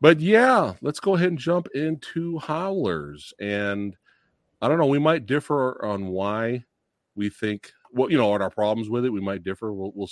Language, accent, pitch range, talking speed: English, American, 100-155 Hz, 190 wpm